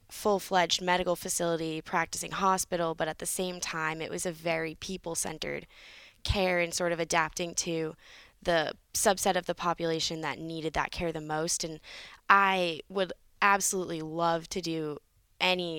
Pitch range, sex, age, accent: 160-180 Hz, female, 10-29, American